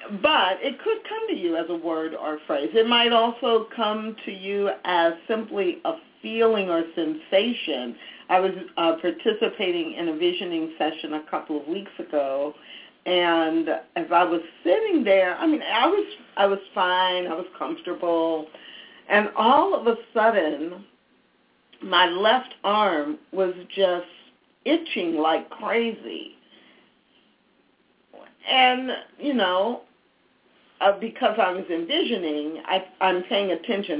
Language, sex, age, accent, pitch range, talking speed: English, female, 50-69, American, 170-230 Hz, 130 wpm